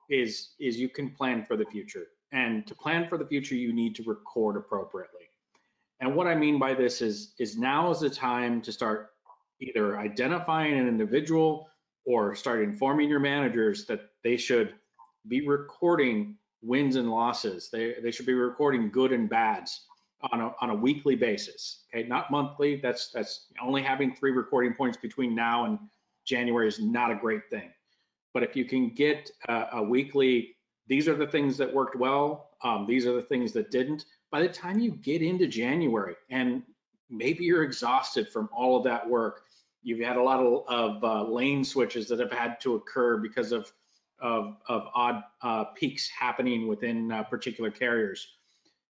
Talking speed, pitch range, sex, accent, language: 180 wpm, 120-150 Hz, male, American, English